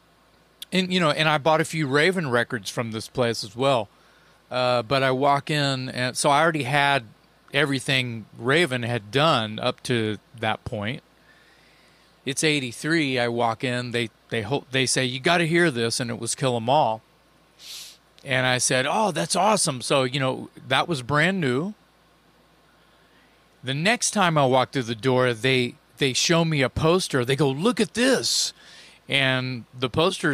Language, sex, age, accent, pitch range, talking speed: English, male, 40-59, American, 120-155 Hz, 175 wpm